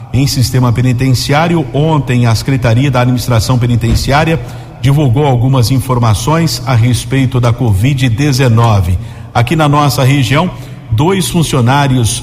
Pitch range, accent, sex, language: 120-145 Hz, Brazilian, male, Portuguese